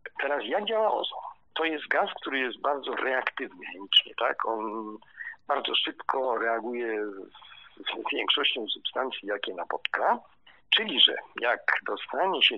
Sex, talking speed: male, 135 wpm